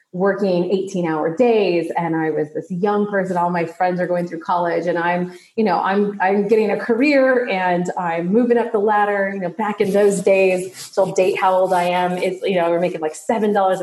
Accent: American